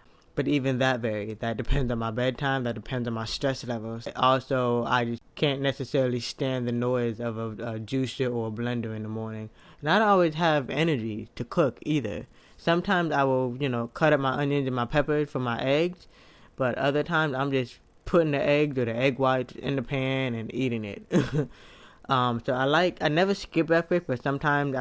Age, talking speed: 20-39, 205 wpm